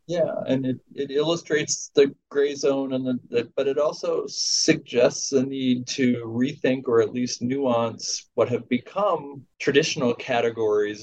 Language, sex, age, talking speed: English, male, 40-59, 150 wpm